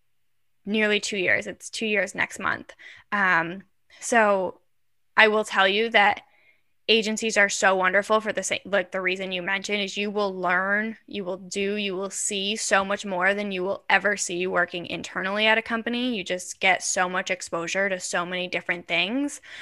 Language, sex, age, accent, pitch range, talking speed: English, female, 10-29, American, 180-205 Hz, 185 wpm